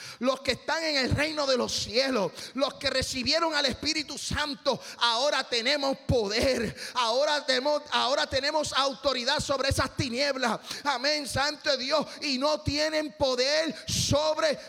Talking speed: 135 wpm